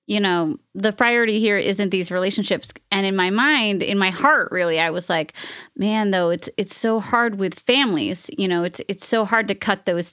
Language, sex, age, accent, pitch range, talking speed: English, female, 30-49, American, 180-220 Hz, 215 wpm